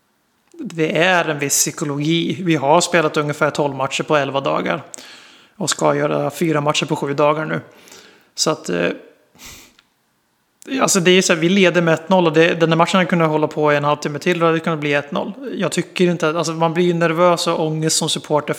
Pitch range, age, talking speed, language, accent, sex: 150-170 Hz, 30-49, 205 wpm, Swedish, native, male